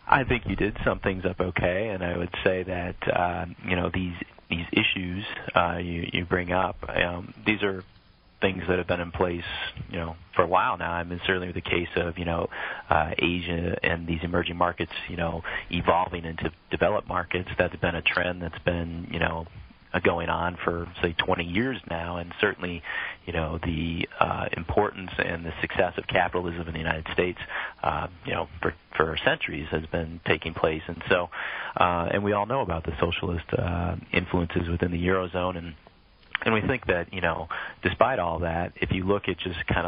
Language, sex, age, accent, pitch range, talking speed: English, male, 30-49, American, 85-90 Hz, 195 wpm